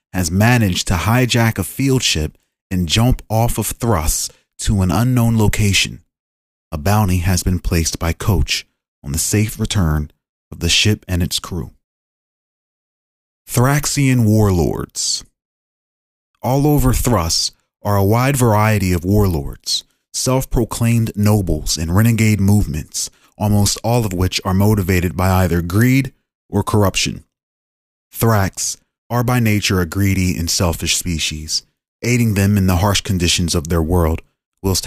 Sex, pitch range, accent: male, 85-110 Hz, American